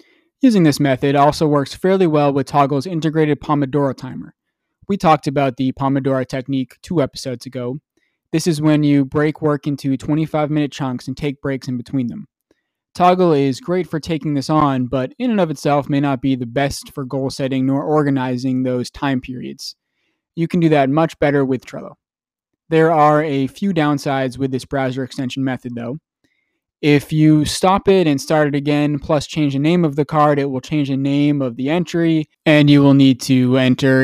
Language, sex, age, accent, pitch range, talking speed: English, male, 20-39, American, 135-155 Hz, 195 wpm